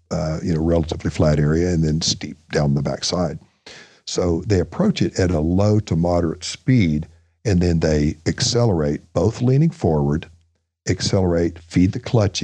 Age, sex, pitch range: 60-79, male, 80-105 Hz